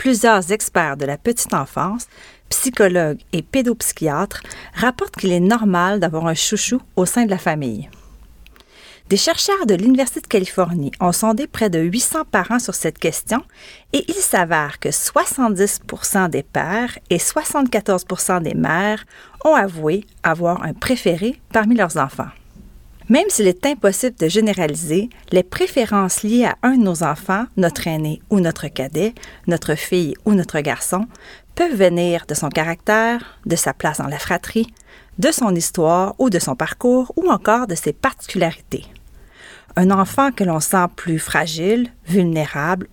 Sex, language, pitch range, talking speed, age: female, French, 170-230 Hz, 155 wpm, 40-59